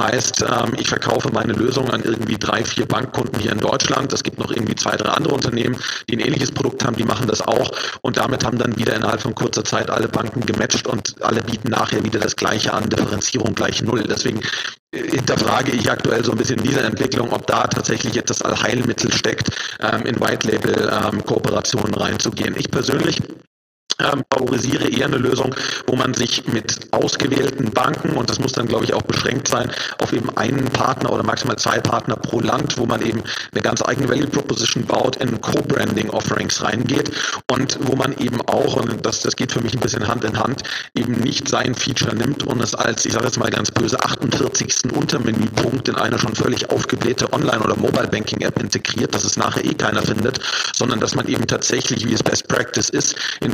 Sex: male